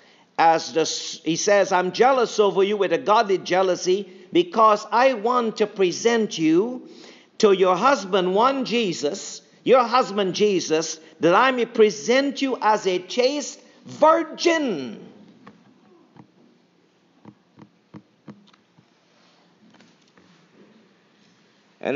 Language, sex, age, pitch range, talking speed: English, male, 50-69, 170-225 Hz, 100 wpm